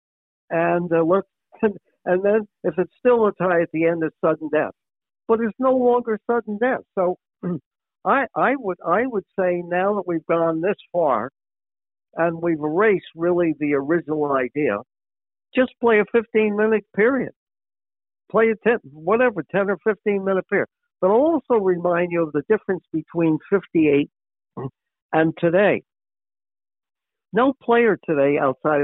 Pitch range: 160-220 Hz